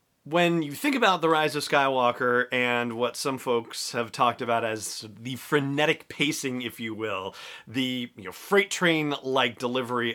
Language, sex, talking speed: English, male, 165 wpm